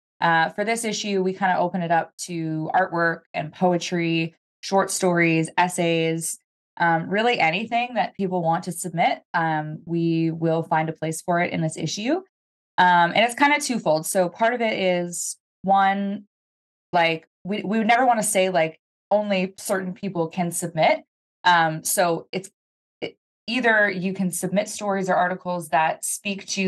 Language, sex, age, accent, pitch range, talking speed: English, female, 20-39, American, 165-200 Hz, 170 wpm